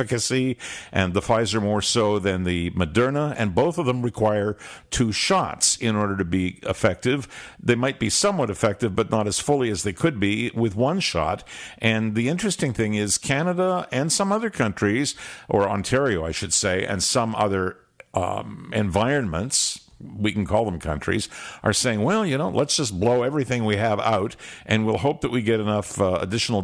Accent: American